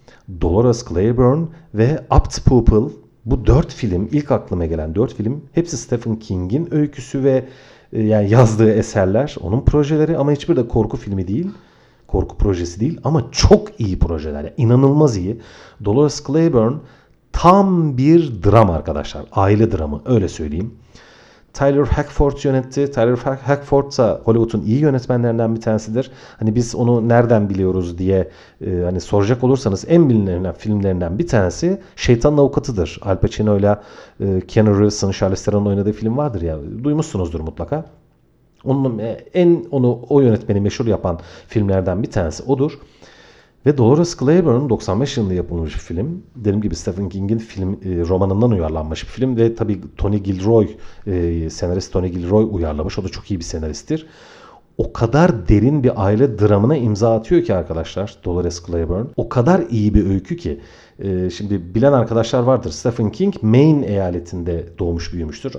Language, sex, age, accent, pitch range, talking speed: Turkish, male, 40-59, native, 95-135 Hz, 145 wpm